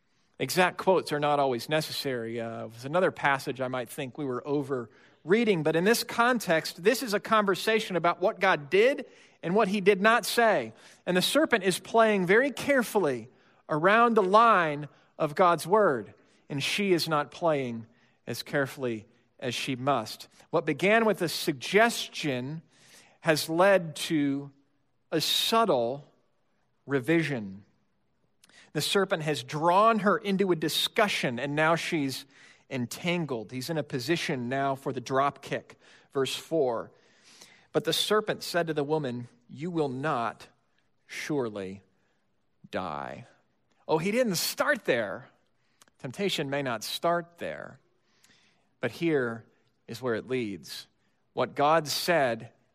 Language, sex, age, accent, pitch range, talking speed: English, male, 40-59, American, 135-195 Hz, 140 wpm